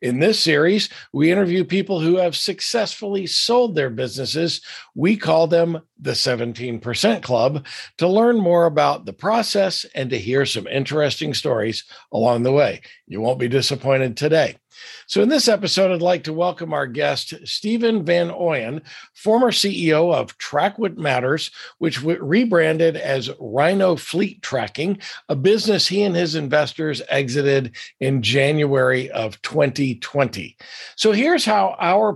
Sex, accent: male, American